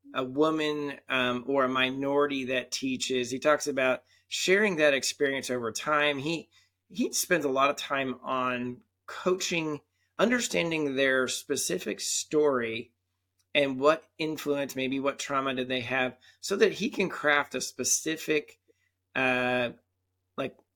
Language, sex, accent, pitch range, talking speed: English, male, American, 125-150 Hz, 135 wpm